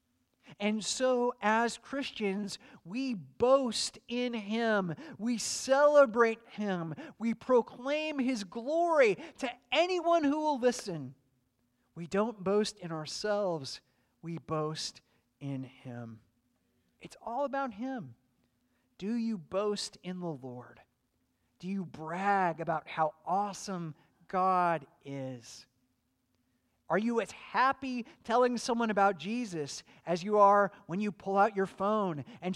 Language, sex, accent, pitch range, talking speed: English, male, American, 155-245 Hz, 120 wpm